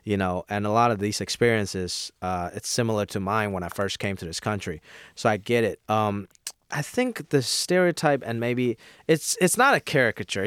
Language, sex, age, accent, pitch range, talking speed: English, male, 20-39, American, 105-130 Hz, 205 wpm